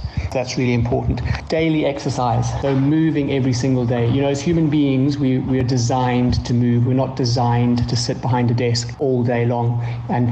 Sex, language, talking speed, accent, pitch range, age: male, English, 190 wpm, British, 120-140 Hz, 40-59